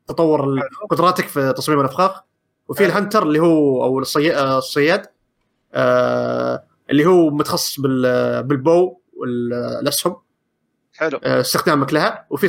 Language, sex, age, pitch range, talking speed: Arabic, male, 30-49, 130-170 Hz, 95 wpm